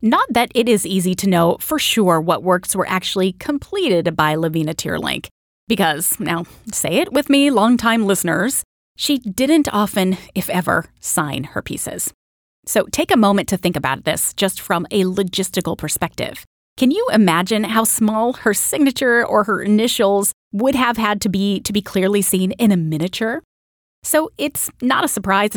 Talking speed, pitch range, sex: 170 wpm, 185-235 Hz, female